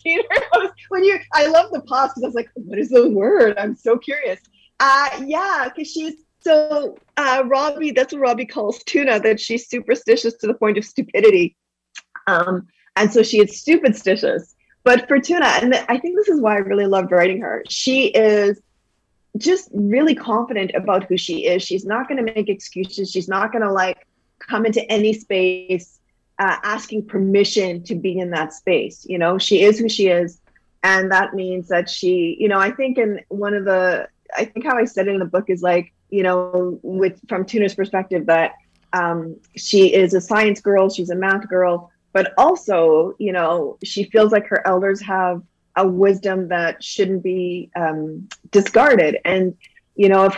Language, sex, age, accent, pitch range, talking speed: English, female, 30-49, American, 185-250 Hz, 190 wpm